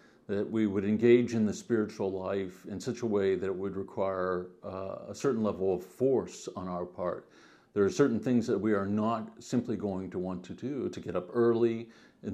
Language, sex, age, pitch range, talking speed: English, male, 50-69, 95-115 Hz, 215 wpm